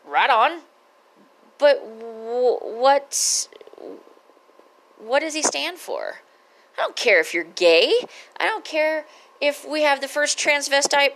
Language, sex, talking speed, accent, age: English, female, 125 wpm, American, 40-59